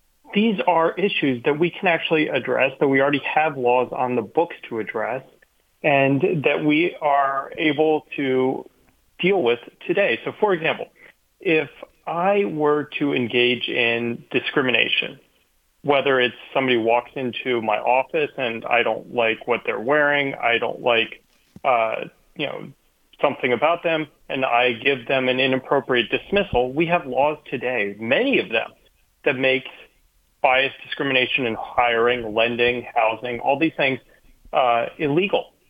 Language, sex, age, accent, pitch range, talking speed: English, male, 40-59, American, 120-155 Hz, 145 wpm